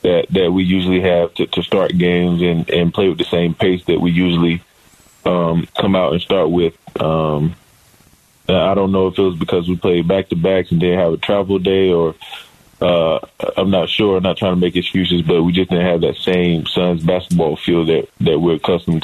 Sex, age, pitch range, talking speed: male, 20-39, 85-95 Hz, 210 wpm